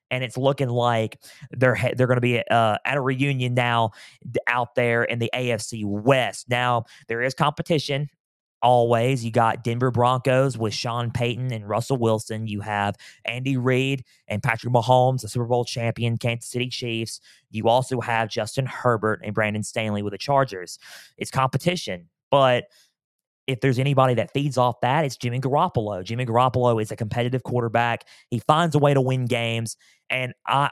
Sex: male